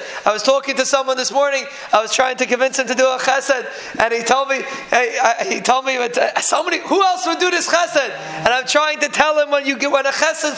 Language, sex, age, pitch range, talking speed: English, male, 20-39, 270-310 Hz, 265 wpm